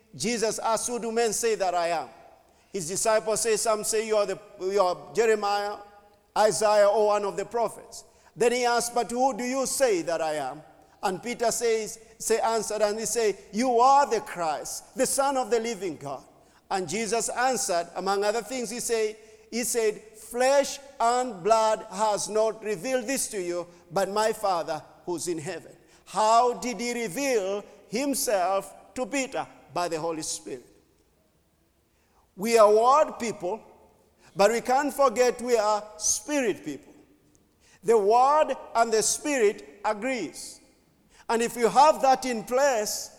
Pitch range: 205-255 Hz